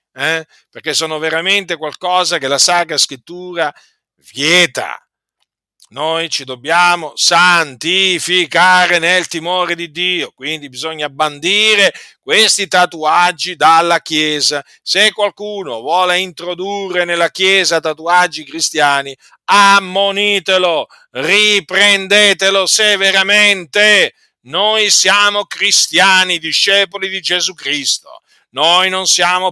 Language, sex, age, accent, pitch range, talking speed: Italian, male, 50-69, native, 160-195 Hz, 95 wpm